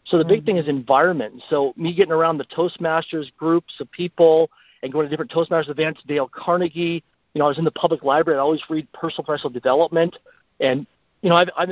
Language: English